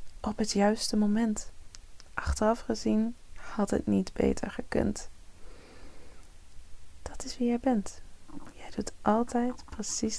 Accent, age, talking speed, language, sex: Dutch, 20-39, 120 wpm, Dutch, female